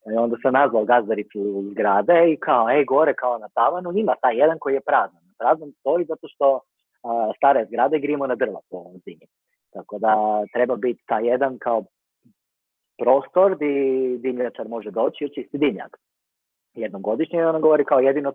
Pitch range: 115-145 Hz